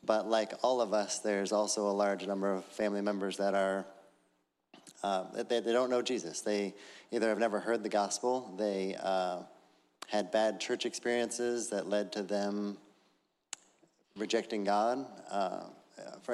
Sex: male